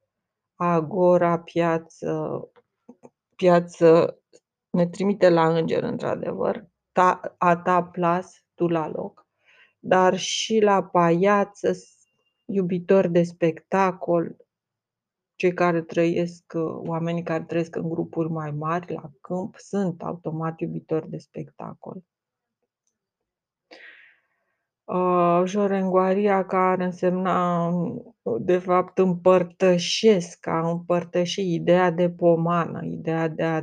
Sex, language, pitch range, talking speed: female, Romanian, 170-190 Hz, 95 wpm